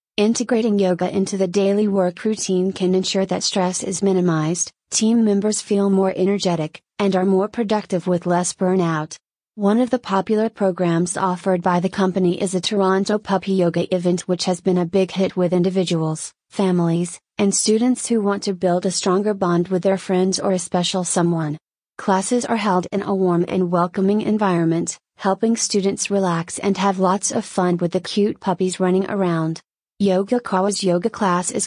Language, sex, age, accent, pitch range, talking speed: English, female, 30-49, American, 180-200 Hz, 175 wpm